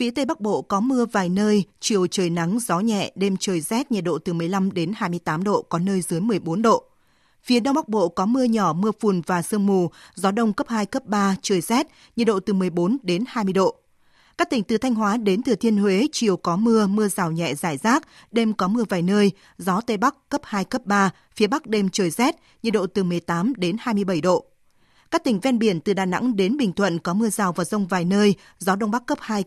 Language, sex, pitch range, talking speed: Vietnamese, female, 190-235 Hz, 240 wpm